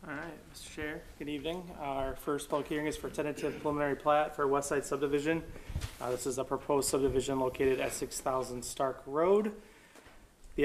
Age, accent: 30-49, American